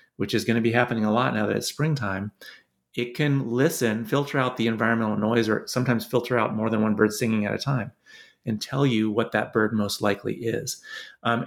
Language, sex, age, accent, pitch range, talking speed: English, male, 30-49, American, 110-125 Hz, 215 wpm